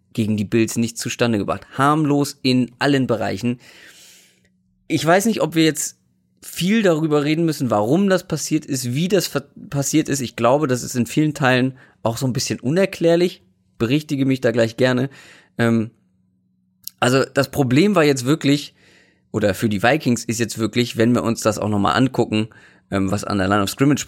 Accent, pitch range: German, 110-145 Hz